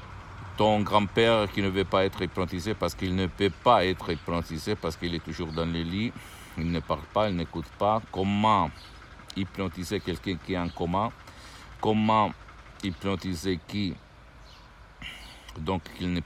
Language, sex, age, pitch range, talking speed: Italian, male, 60-79, 80-100 Hz, 155 wpm